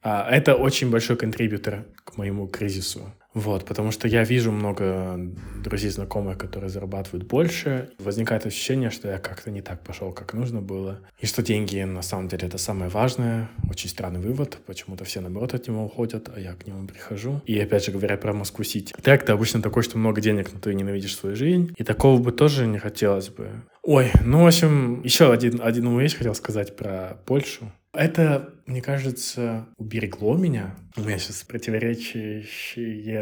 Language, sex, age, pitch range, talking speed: Russian, male, 20-39, 100-130 Hz, 180 wpm